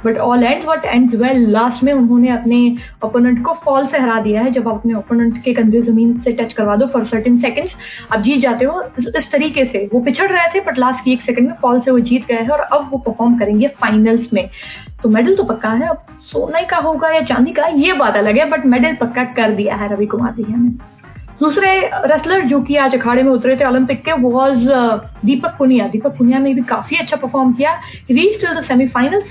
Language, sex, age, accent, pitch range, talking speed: Hindi, female, 20-39, native, 235-285 Hz, 225 wpm